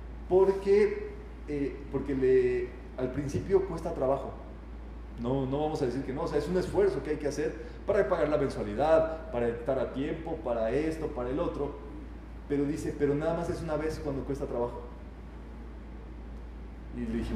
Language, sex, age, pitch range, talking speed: Spanish, male, 30-49, 125-180 Hz, 175 wpm